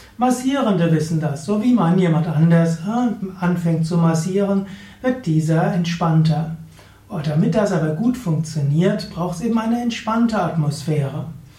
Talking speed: 130 wpm